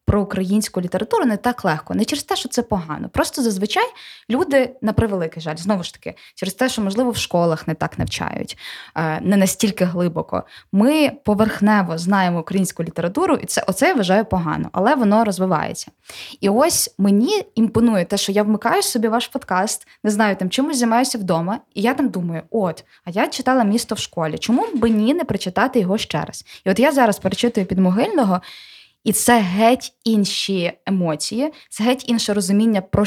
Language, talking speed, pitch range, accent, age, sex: Ukrainian, 180 wpm, 185-240 Hz, native, 20-39, female